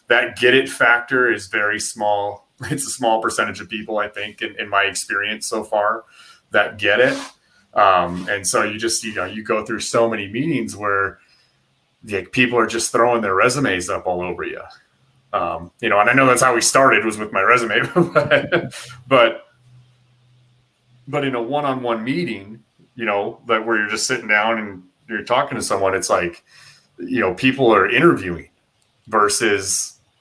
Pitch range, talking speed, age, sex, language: 95-125 Hz, 180 wpm, 30-49, male, English